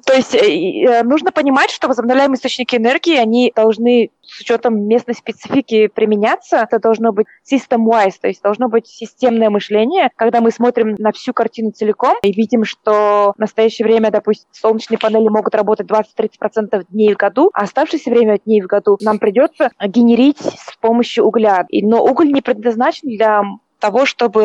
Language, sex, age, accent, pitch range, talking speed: Russian, female, 20-39, native, 215-255 Hz, 165 wpm